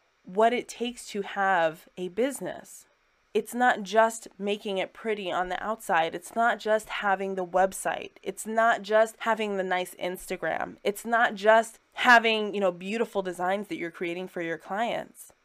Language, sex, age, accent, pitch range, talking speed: English, female, 20-39, American, 190-230 Hz, 165 wpm